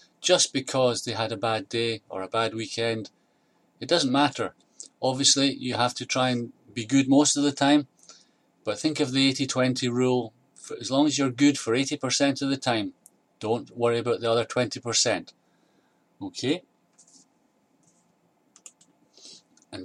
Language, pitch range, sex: English, 110-135 Hz, male